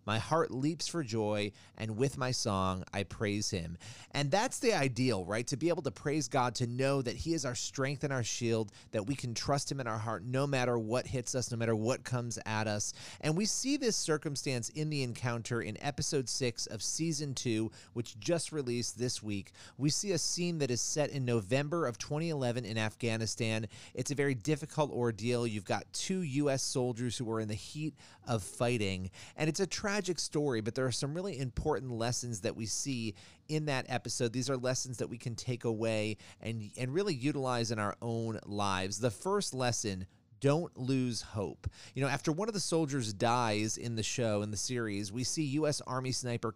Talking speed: 210 wpm